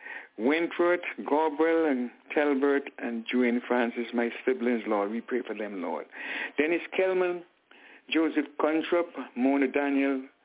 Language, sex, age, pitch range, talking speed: English, male, 60-79, 130-175 Hz, 120 wpm